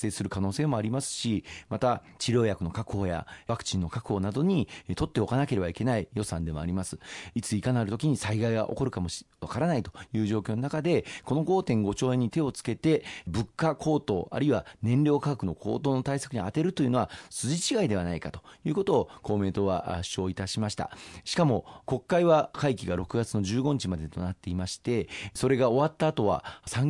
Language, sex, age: Japanese, male, 40-59